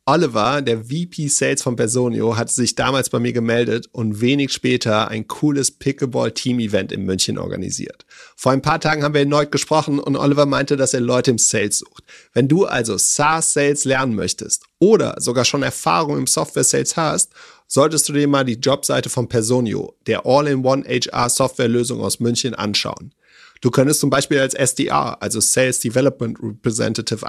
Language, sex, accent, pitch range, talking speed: German, male, German, 120-145 Hz, 165 wpm